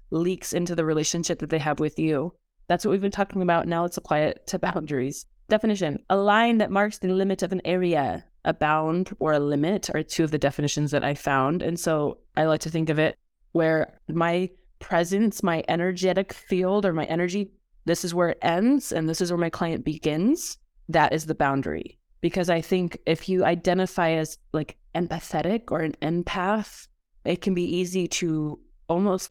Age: 20-39